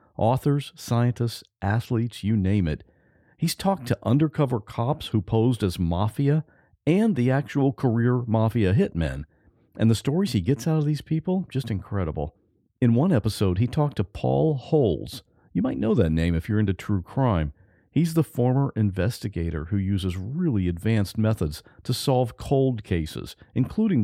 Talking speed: 160 wpm